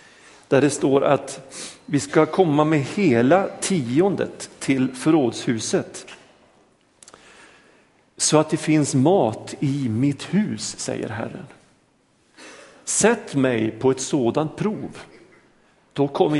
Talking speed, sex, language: 110 wpm, male, Swedish